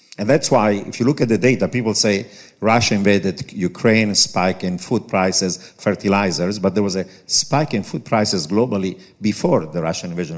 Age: 50-69